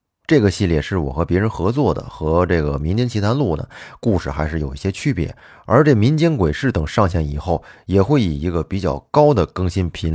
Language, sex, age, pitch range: Chinese, male, 20-39, 80-115 Hz